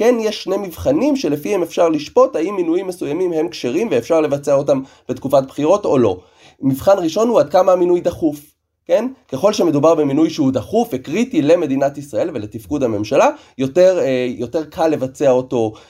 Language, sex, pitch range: Hebrew, male, 120-195 Hz